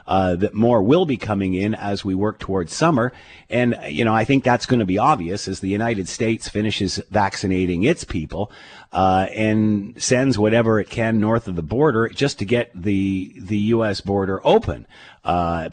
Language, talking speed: English, 185 wpm